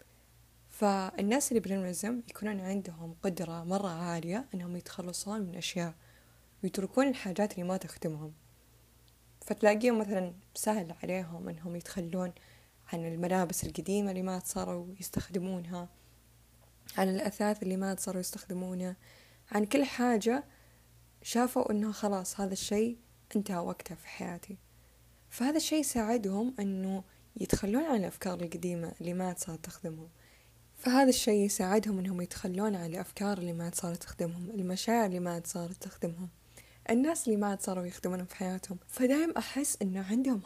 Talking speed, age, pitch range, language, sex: 130 wpm, 10-29, 180-210 Hz, Arabic, female